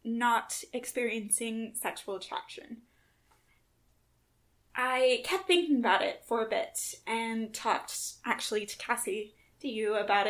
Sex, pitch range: female, 225-285 Hz